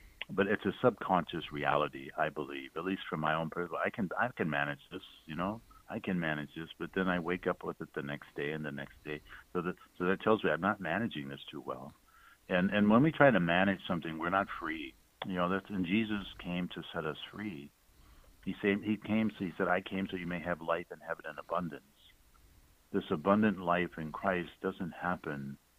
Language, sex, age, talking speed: English, male, 60-79, 230 wpm